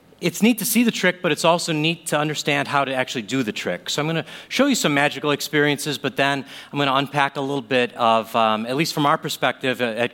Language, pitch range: English, 120-150 Hz